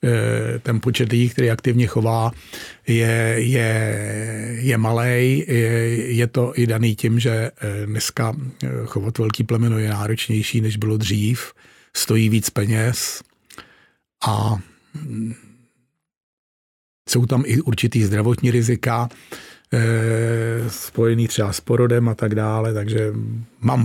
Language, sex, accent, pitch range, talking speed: Czech, male, native, 110-125 Hz, 115 wpm